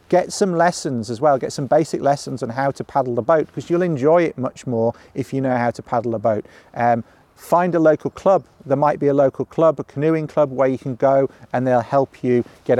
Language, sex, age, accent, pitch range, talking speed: English, male, 40-59, British, 120-145 Hz, 245 wpm